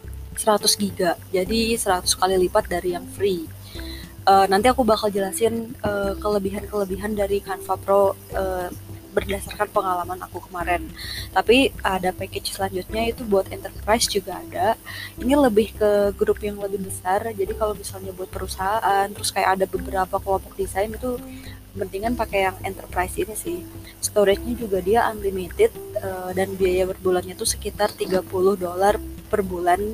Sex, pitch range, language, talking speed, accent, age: female, 185-215 Hz, Indonesian, 145 wpm, native, 20-39